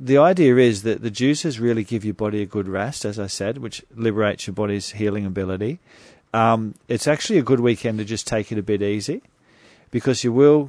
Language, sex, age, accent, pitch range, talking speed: English, male, 40-59, Australian, 105-120 Hz, 215 wpm